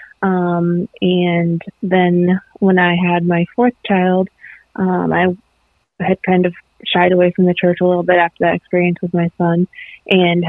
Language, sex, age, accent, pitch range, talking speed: English, female, 20-39, American, 175-195 Hz, 165 wpm